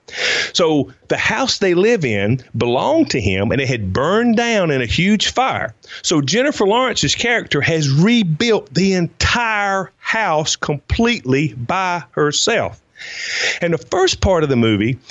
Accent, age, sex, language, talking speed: American, 40-59, male, English, 145 wpm